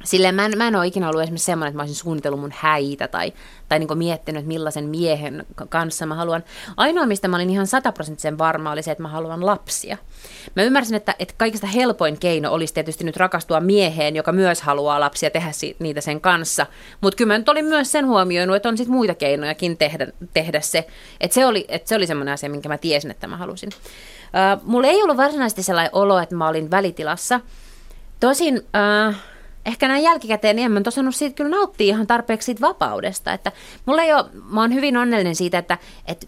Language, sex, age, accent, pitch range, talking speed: Finnish, female, 30-49, native, 155-215 Hz, 200 wpm